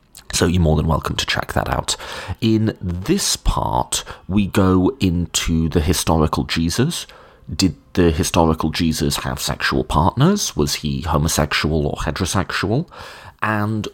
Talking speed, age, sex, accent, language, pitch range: 135 wpm, 30-49, male, British, English, 75-110 Hz